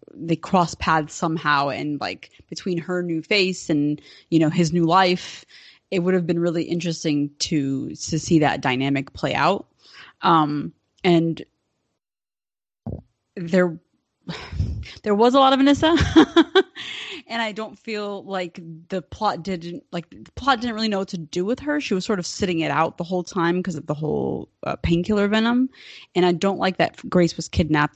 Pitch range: 160-195 Hz